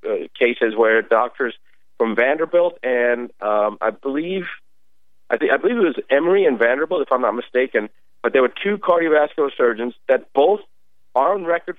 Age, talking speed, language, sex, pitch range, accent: 50-69, 180 wpm, English, male, 130-180 Hz, American